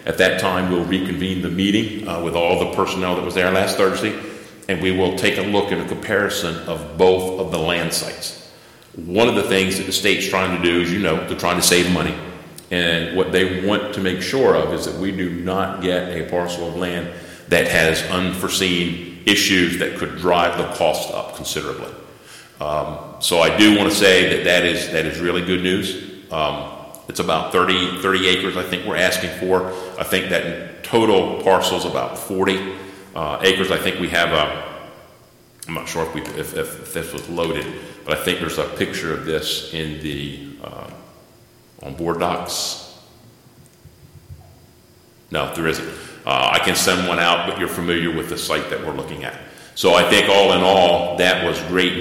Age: 40-59